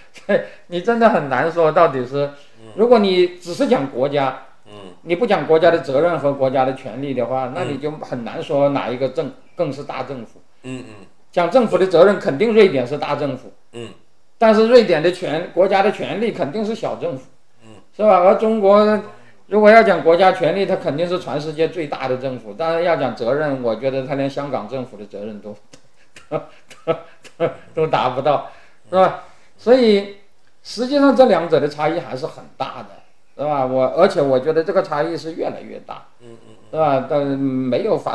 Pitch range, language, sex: 130-180 Hz, Chinese, male